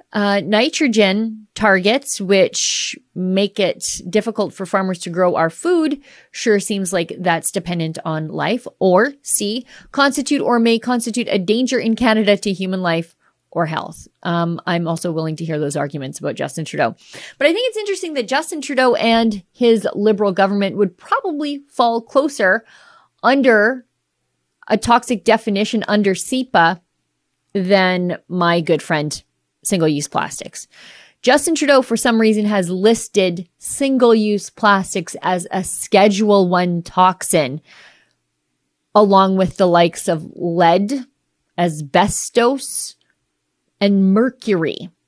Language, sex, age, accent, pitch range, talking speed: English, female, 30-49, American, 175-225 Hz, 130 wpm